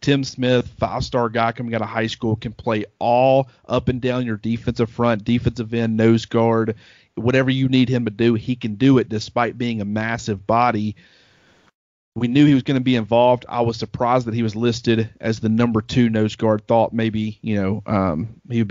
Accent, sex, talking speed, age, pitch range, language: American, male, 210 wpm, 30-49, 110-125 Hz, English